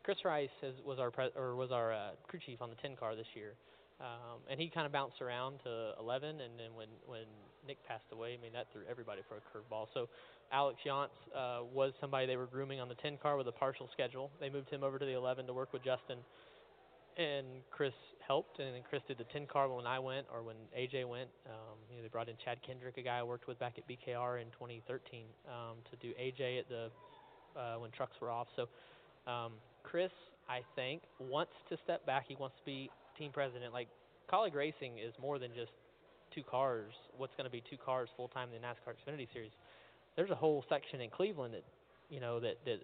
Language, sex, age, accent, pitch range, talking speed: English, male, 20-39, American, 120-135 Hz, 230 wpm